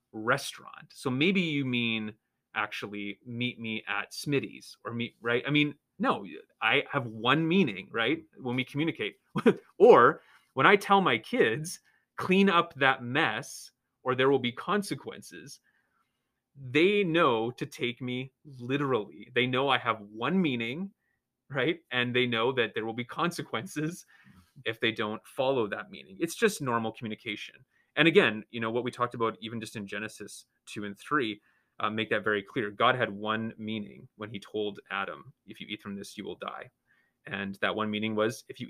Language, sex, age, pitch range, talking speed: English, male, 30-49, 110-150 Hz, 175 wpm